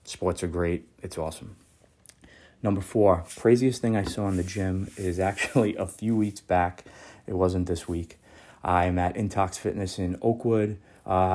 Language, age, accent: English, 30-49, American